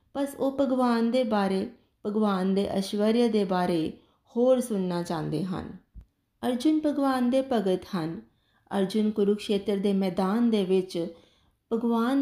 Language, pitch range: Punjabi, 185-240 Hz